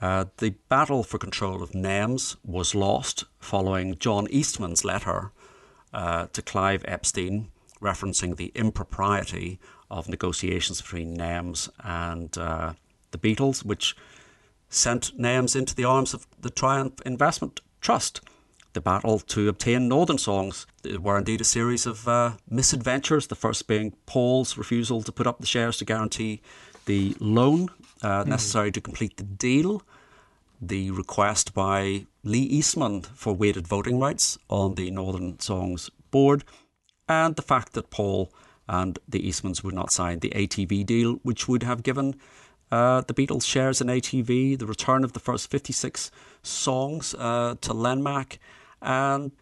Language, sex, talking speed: English, male, 150 wpm